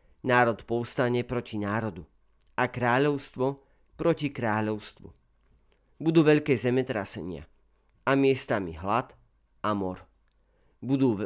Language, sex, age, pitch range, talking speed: Slovak, male, 40-59, 95-125 Hz, 90 wpm